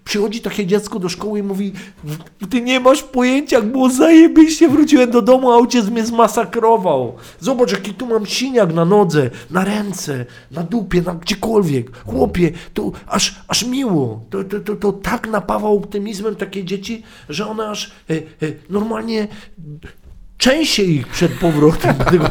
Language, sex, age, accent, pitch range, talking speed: Polish, male, 50-69, native, 160-215 Hz, 160 wpm